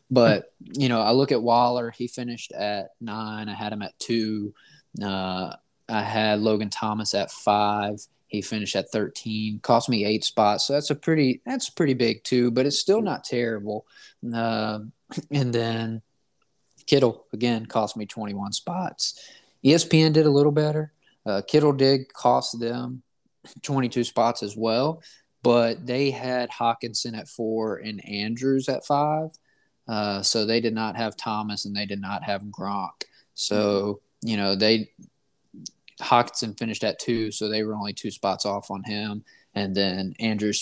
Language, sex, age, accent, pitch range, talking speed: English, male, 20-39, American, 105-125 Hz, 160 wpm